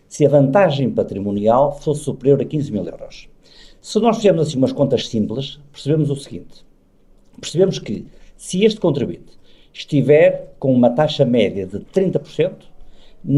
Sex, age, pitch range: male, 50-69, 125-155 Hz